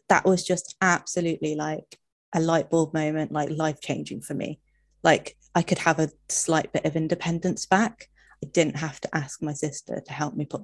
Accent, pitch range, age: British, 150-175 Hz, 20-39